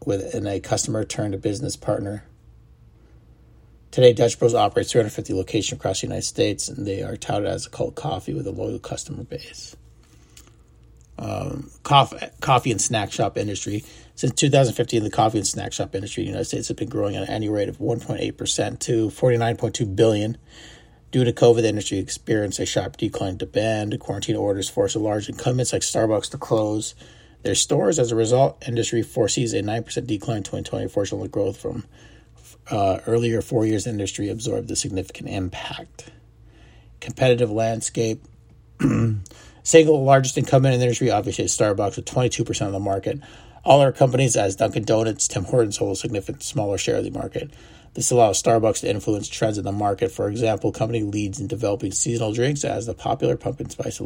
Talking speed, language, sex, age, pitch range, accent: 180 wpm, English, male, 40-59, 105-125 Hz, American